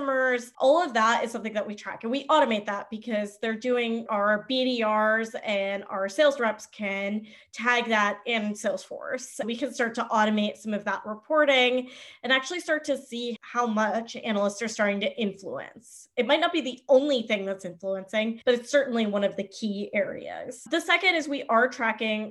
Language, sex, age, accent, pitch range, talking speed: English, female, 20-39, American, 205-255 Hz, 195 wpm